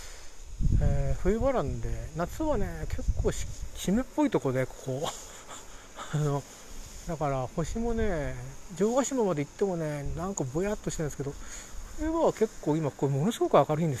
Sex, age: male, 40-59